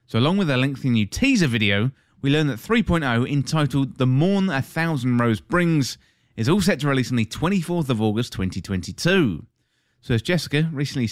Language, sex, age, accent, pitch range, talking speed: English, male, 30-49, British, 115-155 Hz, 185 wpm